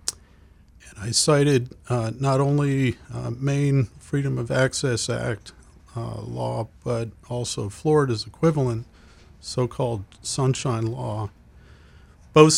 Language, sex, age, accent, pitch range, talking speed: English, male, 50-69, American, 110-130 Hz, 100 wpm